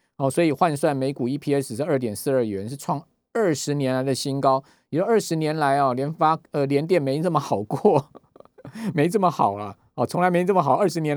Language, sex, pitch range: Chinese, male, 125-160 Hz